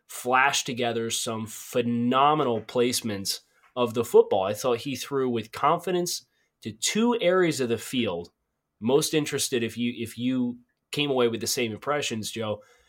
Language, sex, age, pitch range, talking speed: English, male, 20-39, 115-150 Hz, 155 wpm